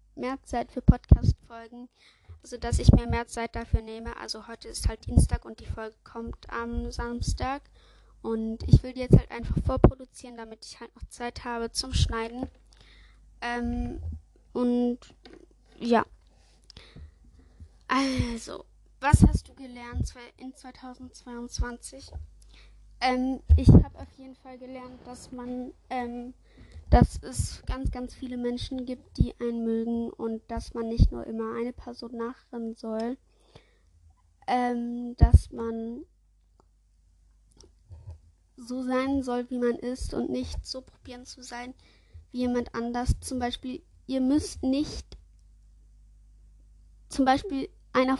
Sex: female